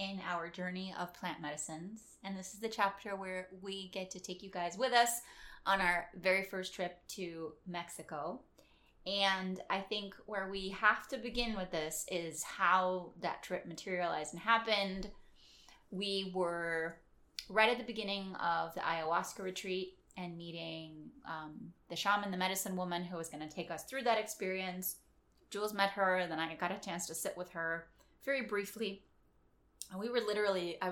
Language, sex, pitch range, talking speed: English, female, 165-195 Hz, 175 wpm